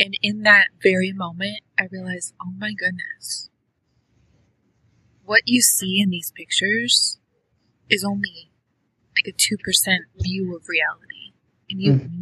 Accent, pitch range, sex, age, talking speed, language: American, 185-235 Hz, female, 20-39, 135 wpm, English